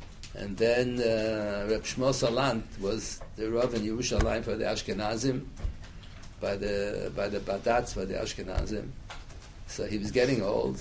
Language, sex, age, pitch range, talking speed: English, male, 60-79, 100-125 Hz, 150 wpm